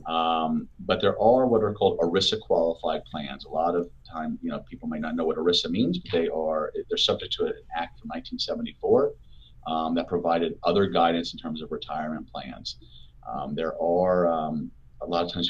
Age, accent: 30-49, American